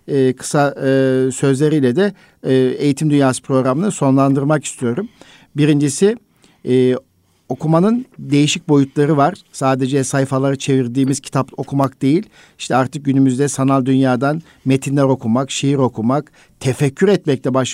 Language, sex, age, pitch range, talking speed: Turkish, male, 50-69, 130-155 Hz, 120 wpm